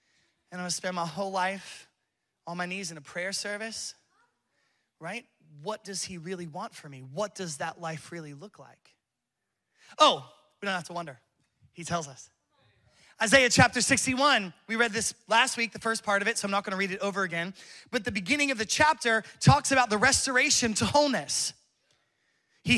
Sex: male